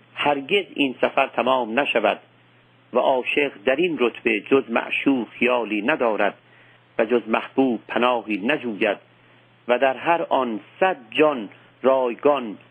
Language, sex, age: Persian, male, 50-69